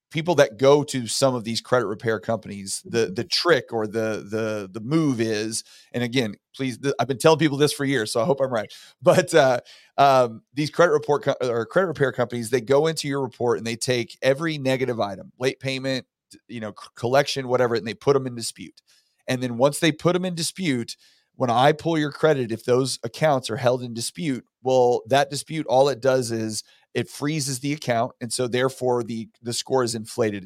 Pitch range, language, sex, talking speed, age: 115-140 Hz, English, male, 210 wpm, 30-49